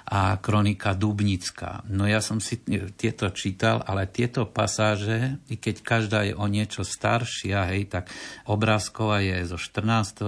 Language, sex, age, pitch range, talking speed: Slovak, male, 50-69, 95-110 Hz, 145 wpm